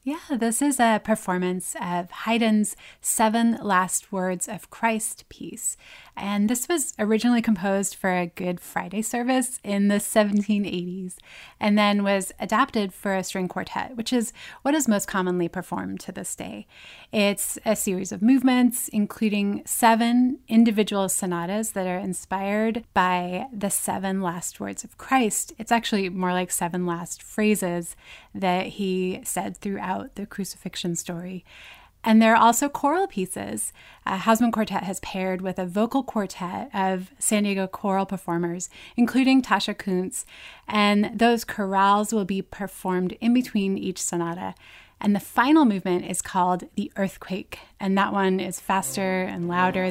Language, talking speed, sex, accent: English, 150 wpm, female, American